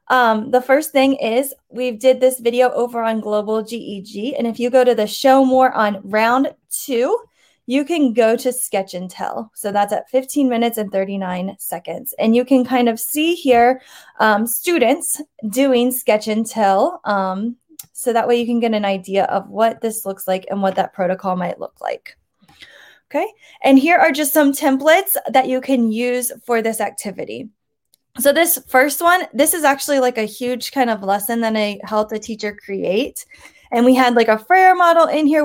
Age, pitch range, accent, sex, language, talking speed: 20-39, 215-270 Hz, American, female, English, 195 wpm